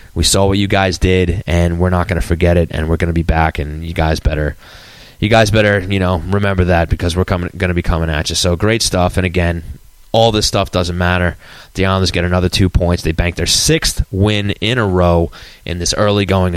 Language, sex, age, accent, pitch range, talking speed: English, male, 20-39, American, 85-105 Hz, 230 wpm